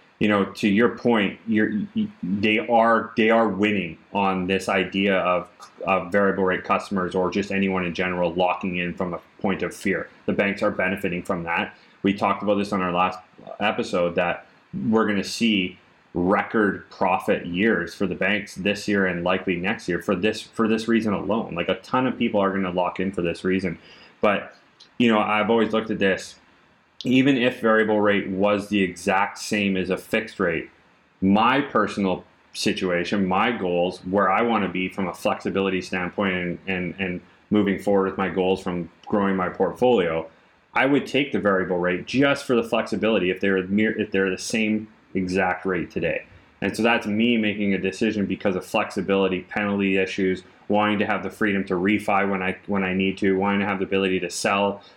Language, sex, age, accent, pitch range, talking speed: English, male, 30-49, American, 95-105 Hz, 195 wpm